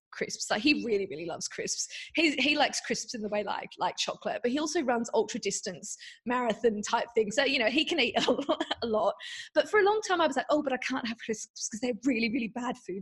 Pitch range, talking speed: 210-325 Hz, 255 wpm